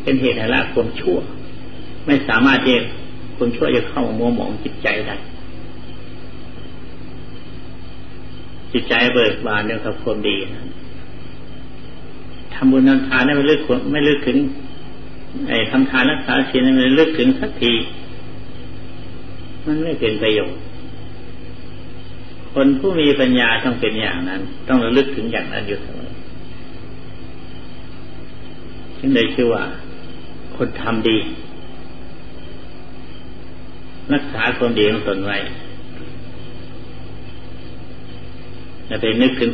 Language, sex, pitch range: Thai, male, 100-130 Hz